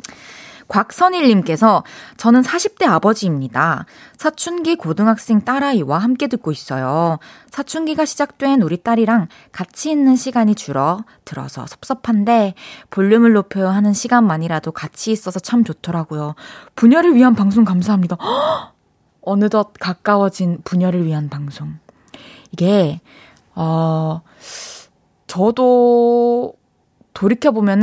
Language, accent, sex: Korean, native, female